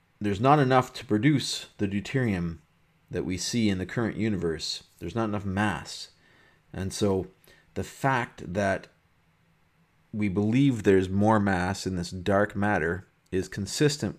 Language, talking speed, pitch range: English, 145 wpm, 95-115 Hz